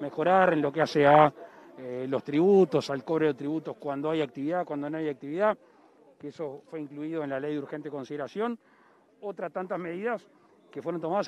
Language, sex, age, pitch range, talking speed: Spanish, male, 40-59, 150-200 Hz, 190 wpm